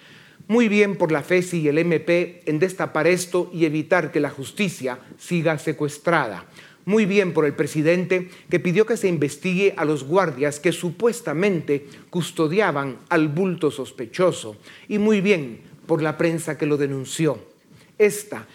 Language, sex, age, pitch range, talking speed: Spanish, male, 40-59, 155-185 Hz, 150 wpm